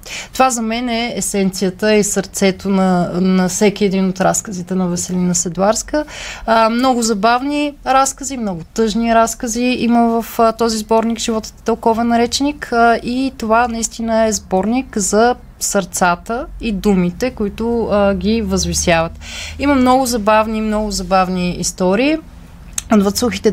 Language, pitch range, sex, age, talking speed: Bulgarian, 185-230 Hz, female, 30-49, 125 wpm